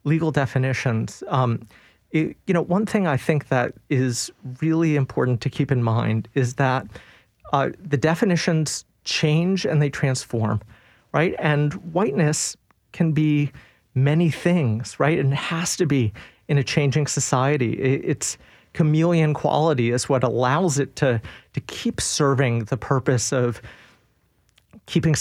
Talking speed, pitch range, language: 140 wpm, 125-160 Hz, English